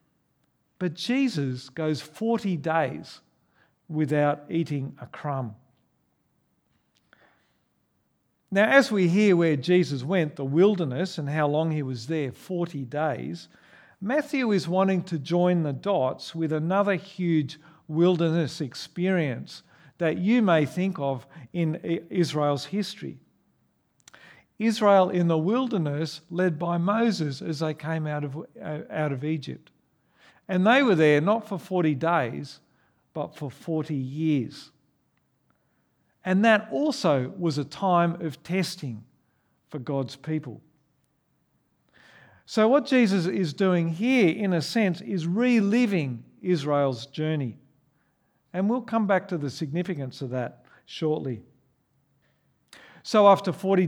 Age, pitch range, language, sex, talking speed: 50-69, 145-190 Hz, English, male, 120 wpm